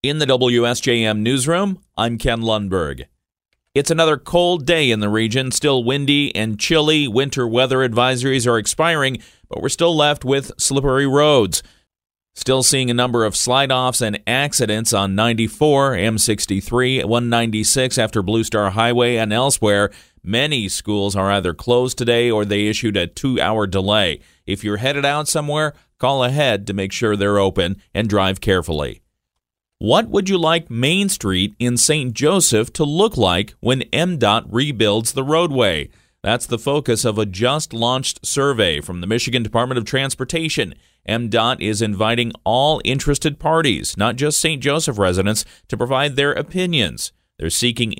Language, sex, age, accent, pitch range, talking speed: English, male, 40-59, American, 110-140 Hz, 155 wpm